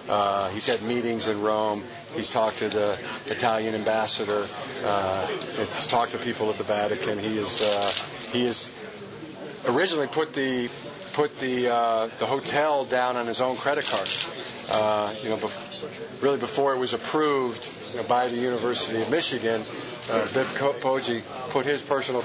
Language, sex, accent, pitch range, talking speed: English, male, American, 110-145 Hz, 165 wpm